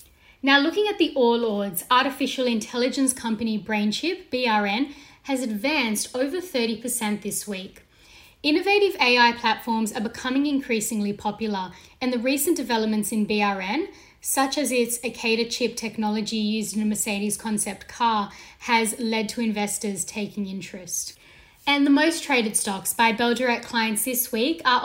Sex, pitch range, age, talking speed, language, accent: female, 210-255 Hz, 10-29, 140 wpm, English, Australian